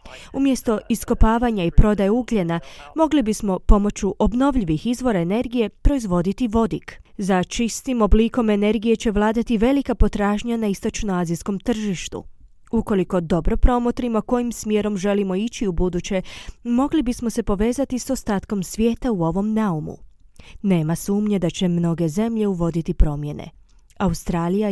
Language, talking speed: Croatian, 125 wpm